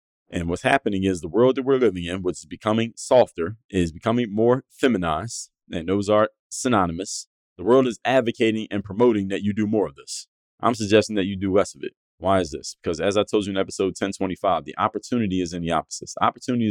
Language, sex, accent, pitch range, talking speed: English, male, American, 95-115 Hz, 215 wpm